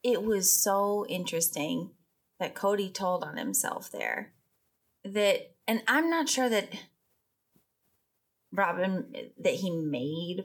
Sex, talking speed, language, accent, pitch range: female, 115 wpm, English, American, 175-225 Hz